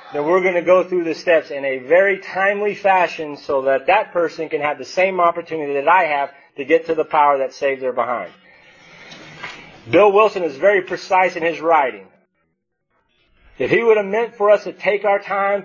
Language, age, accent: English, 40-59, American